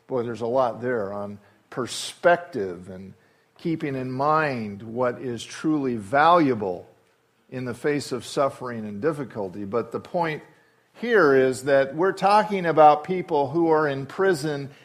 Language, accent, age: English, American, 50-69